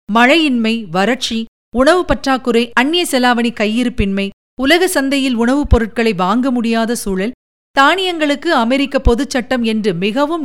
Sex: female